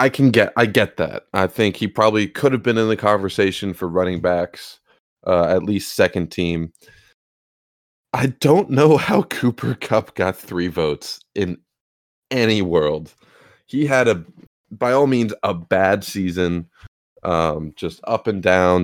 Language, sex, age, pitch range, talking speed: English, male, 20-39, 85-105 Hz, 160 wpm